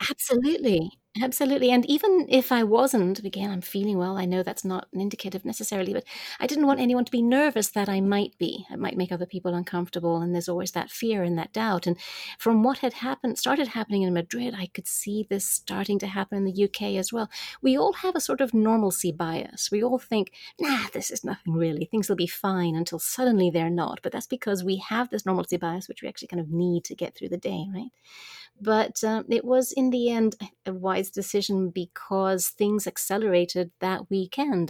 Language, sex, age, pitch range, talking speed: English, female, 30-49, 180-230 Hz, 215 wpm